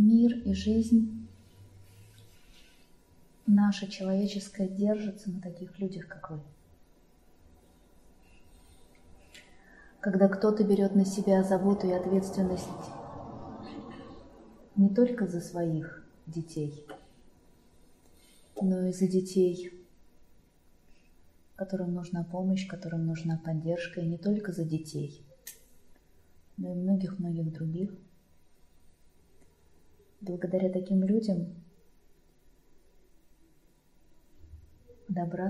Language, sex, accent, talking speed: Russian, female, native, 80 wpm